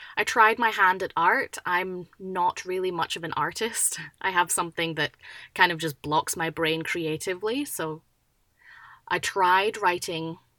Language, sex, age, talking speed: English, female, 20-39, 160 wpm